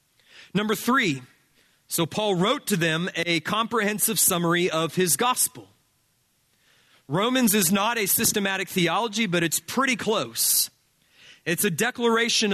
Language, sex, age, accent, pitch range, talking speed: English, male, 30-49, American, 165-225 Hz, 125 wpm